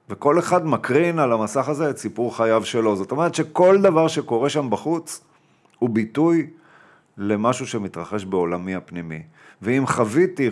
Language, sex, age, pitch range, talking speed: Hebrew, male, 40-59, 110-150 Hz, 145 wpm